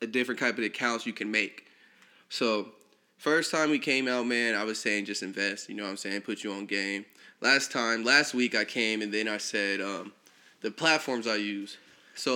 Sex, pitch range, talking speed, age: male, 110-140 Hz, 210 wpm, 20-39